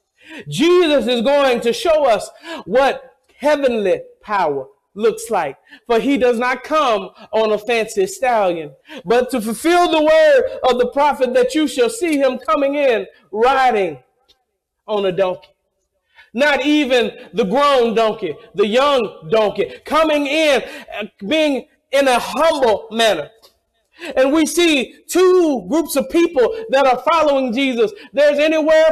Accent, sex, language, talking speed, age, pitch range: American, male, English, 140 wpm, 40-59, 260-335 Hz